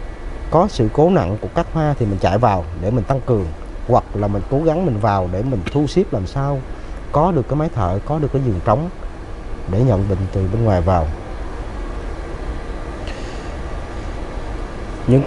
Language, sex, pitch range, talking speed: Vietnamese, male, 95-160 Hz, 180 wpm